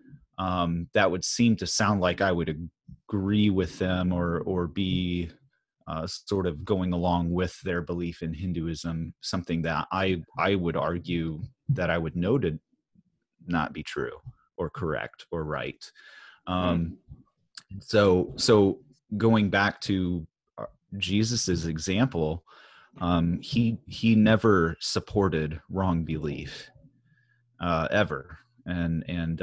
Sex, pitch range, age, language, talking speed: male, 85-105 Hz, 30-49, English, 125 wpm